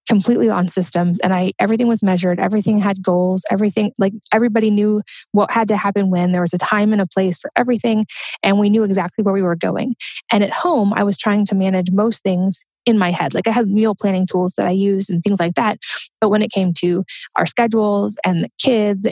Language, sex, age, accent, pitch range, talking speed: English, female, 20-39, American, 185-215 Hz, 230 wpm